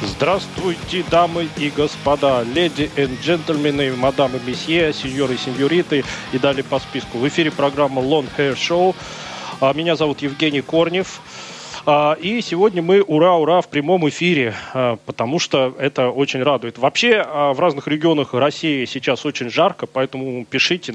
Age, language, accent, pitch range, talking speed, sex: 20-39, Russian, native, 125-155 Hz, 140 wpm, male